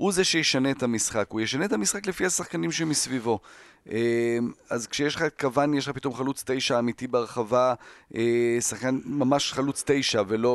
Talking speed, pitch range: 160 wpm, 115-140 Hz